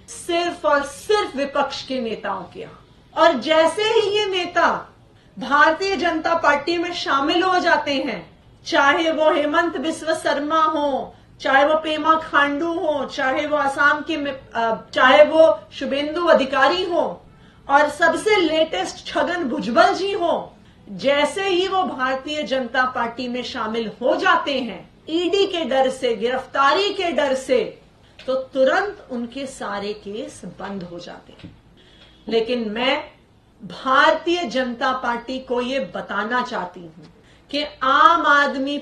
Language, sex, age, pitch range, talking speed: Hindi, female, 30-49, 250-320 Hz, 135 wpm